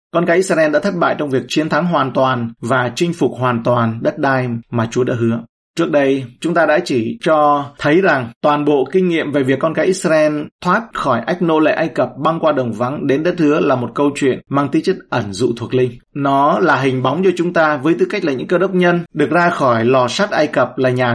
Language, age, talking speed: Vietnamese, 20-39, 255 wpm